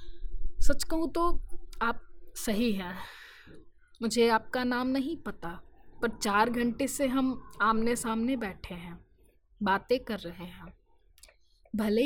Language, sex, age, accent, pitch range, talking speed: Hindi, female, 20-39, native, 215-270 Hz, 125 wpm